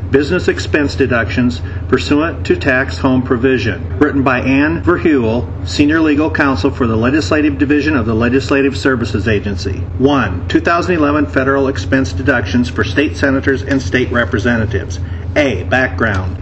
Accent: American